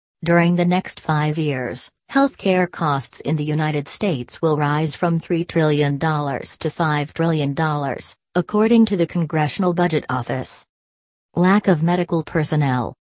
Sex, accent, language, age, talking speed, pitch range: female, American, English, 40-59, 130 wpm, 145-175 Hz